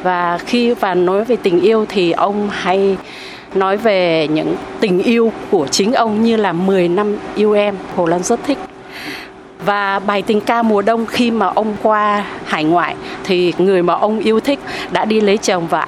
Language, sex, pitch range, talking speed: Vietnamese, female, 180-220 Hz, 195 wpm